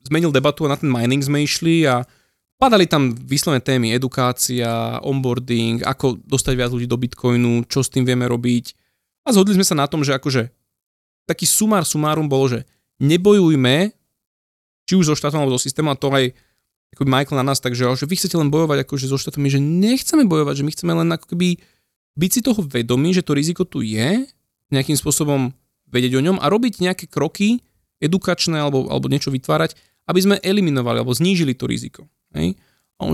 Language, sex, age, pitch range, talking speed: Slovak, male, 20-39, 125-170 Hz, 185 wpm